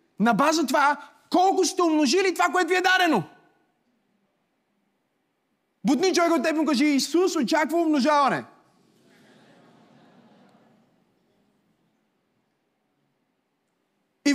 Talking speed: 90 wpm